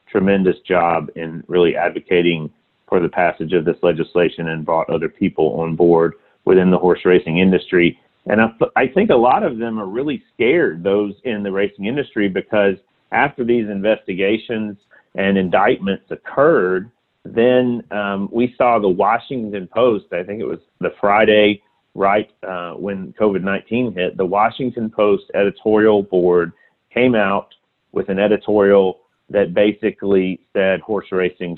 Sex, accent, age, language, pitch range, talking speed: male, American, 40-59, English, 90-105 Hz, 150 wpm